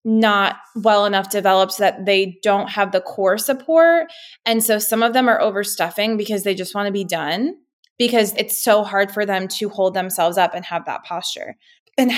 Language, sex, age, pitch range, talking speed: English, female, 20-39, 180-210 Hz, 195 wpm